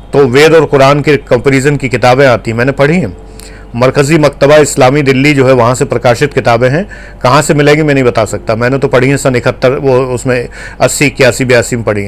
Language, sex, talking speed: Hindi, male, 215 wpm